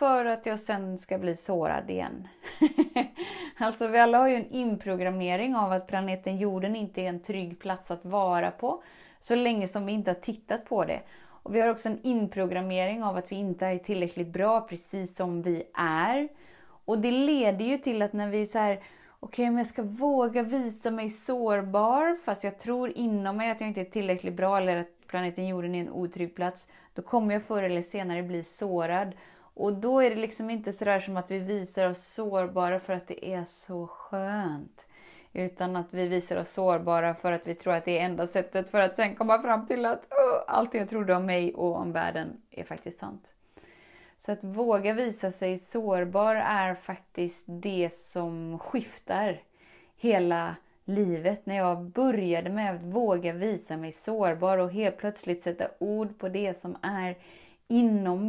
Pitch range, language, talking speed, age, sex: 180-225 Hz, Swedish, 190 wpm, 20-39, female